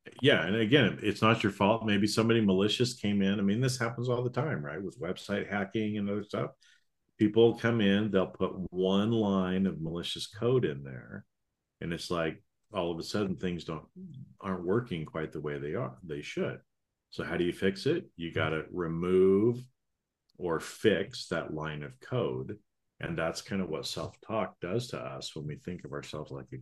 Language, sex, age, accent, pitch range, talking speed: English, male, 40-59, American, 80-100 Hz, 200 wpm